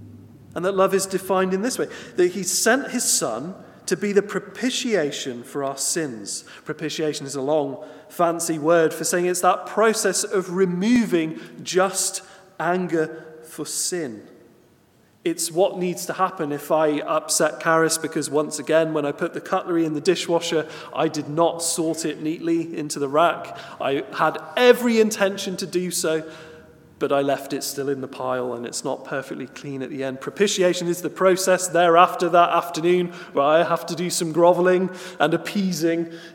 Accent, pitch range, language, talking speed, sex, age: British, 150-185 Hz, English, 175 wpm, male, 30-49